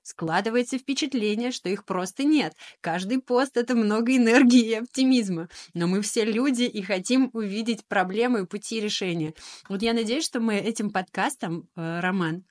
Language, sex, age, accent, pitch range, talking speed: Russian, female, 20-39, native, 185-230 Hz, 160 wpm